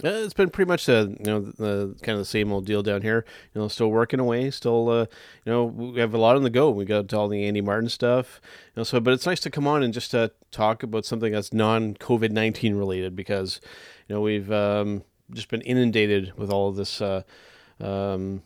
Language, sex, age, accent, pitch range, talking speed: English, male, 30-49, American, 105-115 Hz, 245 wpm